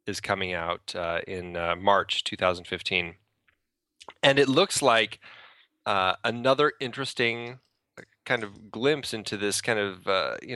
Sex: male